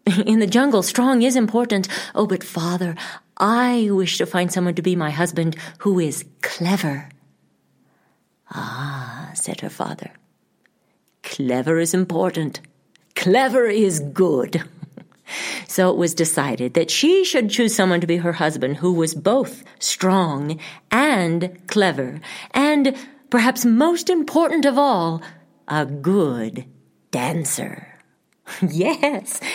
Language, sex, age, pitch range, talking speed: English, female, 50-69, 155-225 Hz, 120 wpm